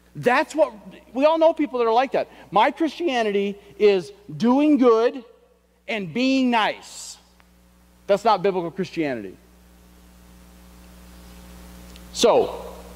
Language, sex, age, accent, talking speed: English, male, 40-59, American, 105 wpm